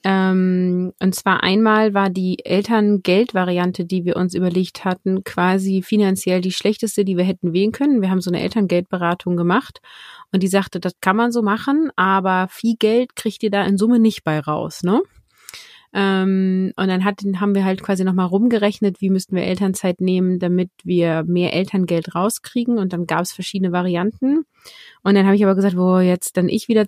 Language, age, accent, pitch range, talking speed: German, 30-49, German, 185-210 Hz, 185 wpm